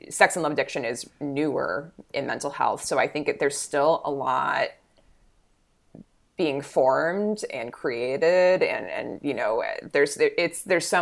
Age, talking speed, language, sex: 20-39, 150 wpm, English, female